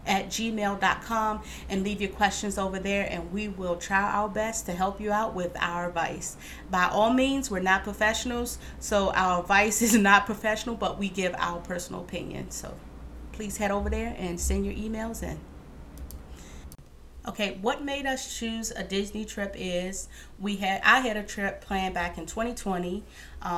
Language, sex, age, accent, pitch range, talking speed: English, female, 30-49, American, 180-210 Hz, 175 wpm